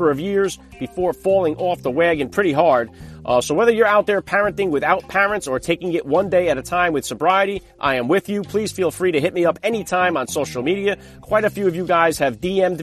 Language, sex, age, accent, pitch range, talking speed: English, male, 40-59, American, 145-200 Hz, 240 wpm